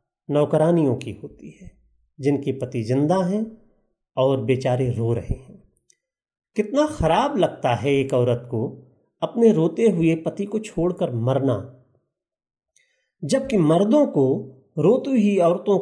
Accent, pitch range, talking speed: native, 125-185 Hz, 125 wpm